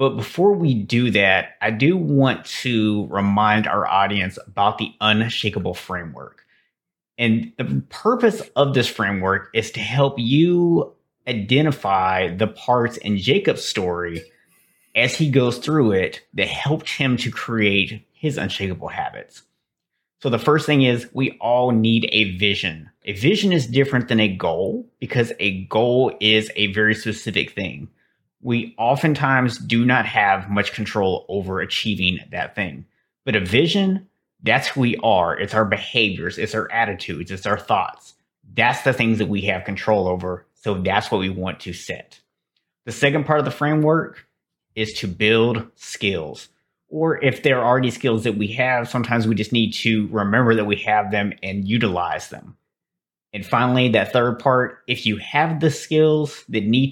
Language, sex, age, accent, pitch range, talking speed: English, male, 30-49, American, 105-135 Hz, 165 wpm